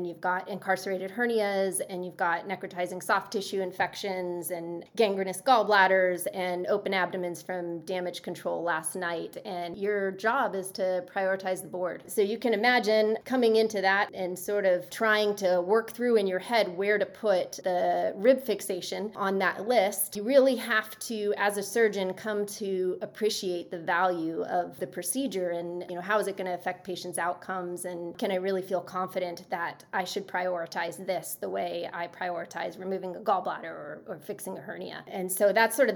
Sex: female